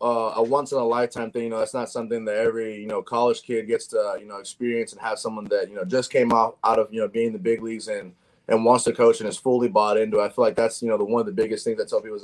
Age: 20-39